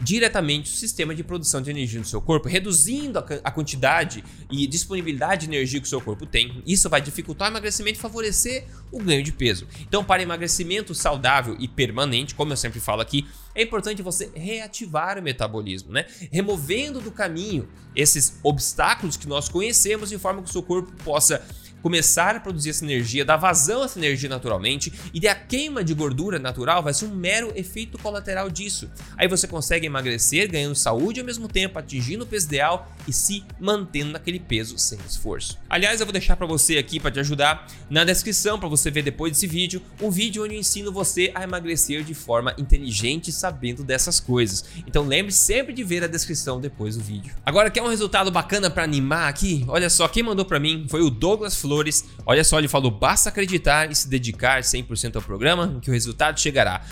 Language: Portuguese